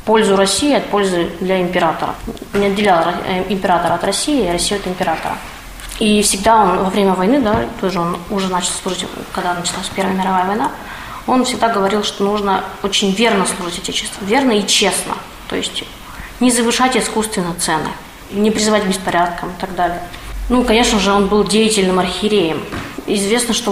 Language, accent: Russian, native